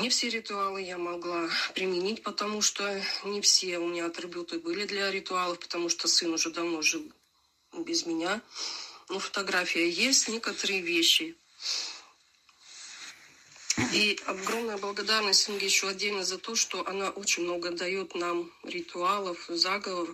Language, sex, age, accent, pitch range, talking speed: Russian, female, 30-49, native, 175-210 Hz, 135 wpm